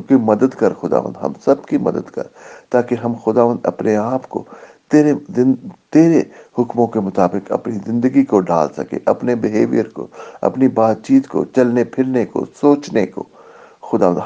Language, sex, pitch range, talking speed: English, male, 95-120 Hz, 165 wpm